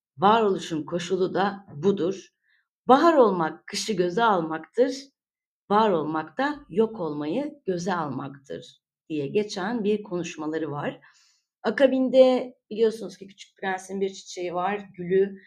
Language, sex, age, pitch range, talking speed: Turkish, female, 30-49, 180-215 Hz, 115 wpm